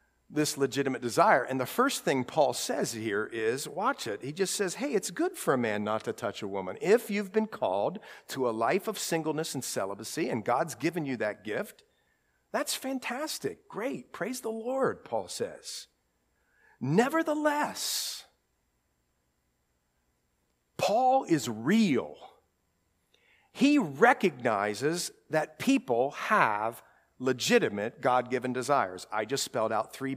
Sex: male